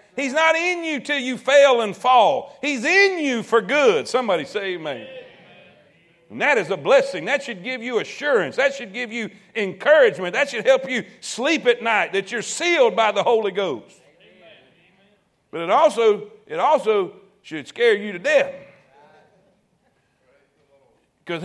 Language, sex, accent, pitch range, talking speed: English, male, American, 190-280 Hz, 155 wpm